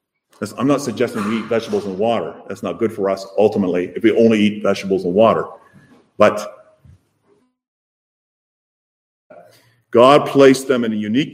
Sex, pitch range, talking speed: male, 105-150 Hz, 150 wpm